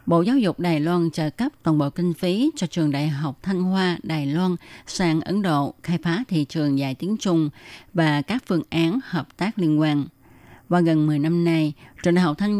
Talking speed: 220 wpm